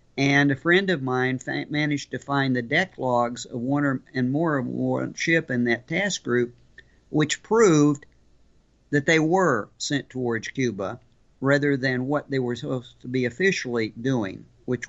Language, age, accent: English, 50-69, American